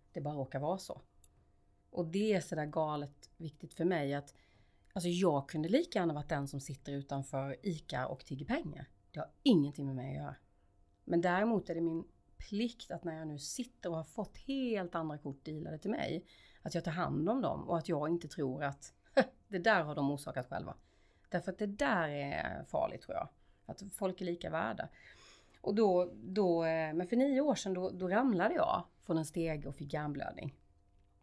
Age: 30-49